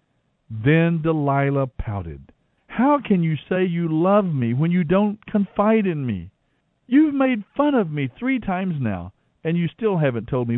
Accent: American